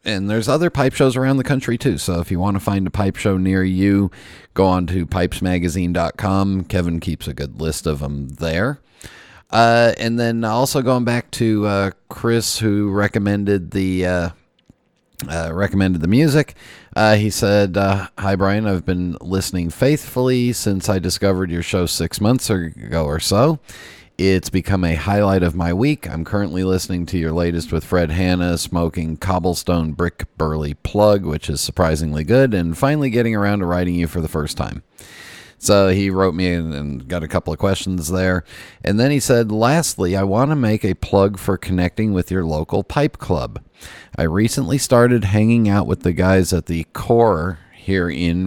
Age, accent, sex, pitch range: 40-59, American, male, 85-105 Hz